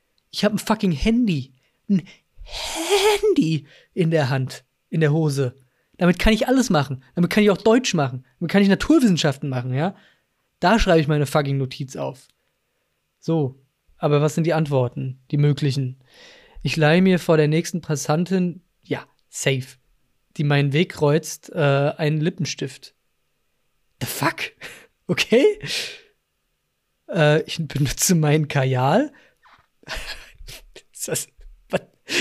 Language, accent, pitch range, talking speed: German, German, 140-190 Hz, 130 wpm